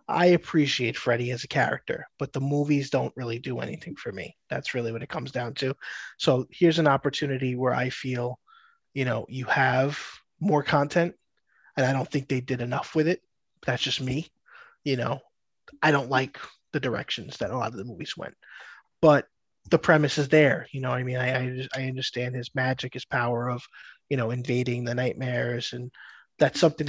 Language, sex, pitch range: English, male, 125-145 Hz